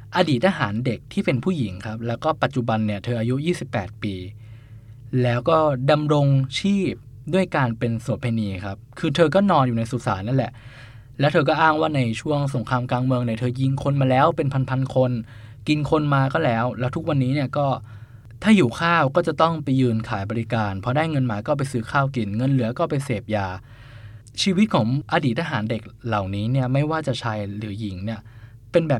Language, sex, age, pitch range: Thai, male, 20-39, 115-140 Hz